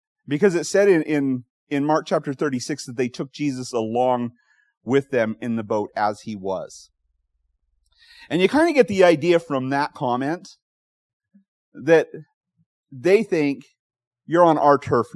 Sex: male